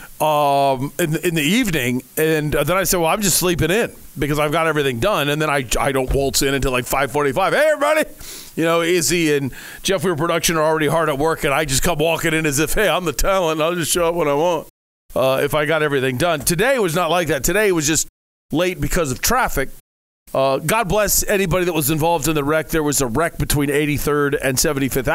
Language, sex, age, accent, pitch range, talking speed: English, male, 40-59, American, 140-195 Hz, 235 wpm